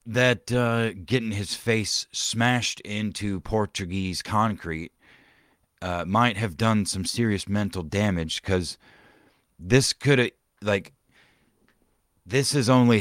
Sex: male